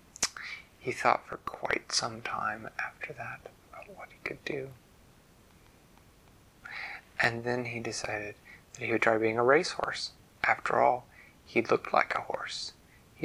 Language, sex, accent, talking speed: English, male, American, 145 wpm